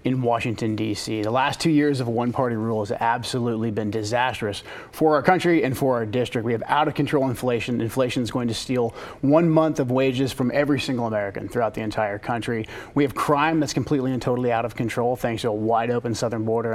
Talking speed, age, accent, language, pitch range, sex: 220 wpm, 30-49, American, English, 115-135 Hz, male